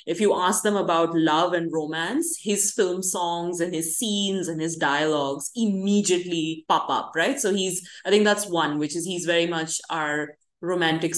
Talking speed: 185 wpm